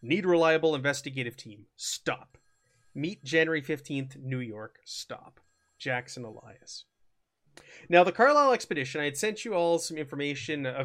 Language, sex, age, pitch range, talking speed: English, male, 30-49, 130-165 Hz, 140 wpm